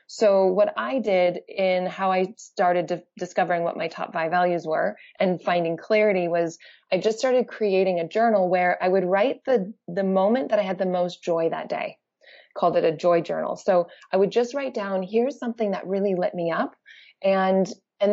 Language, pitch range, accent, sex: English, 175-215 Hz, American, female